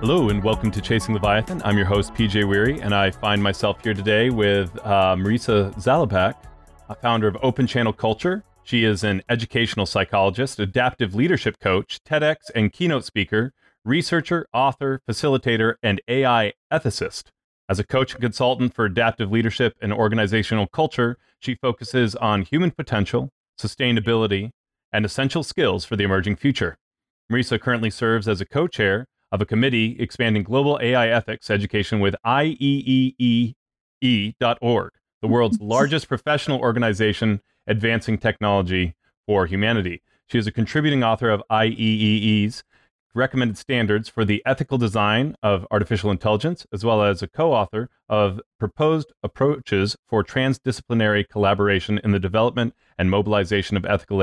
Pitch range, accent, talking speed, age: 105-125 Hz, American, 145 wpm, 30-49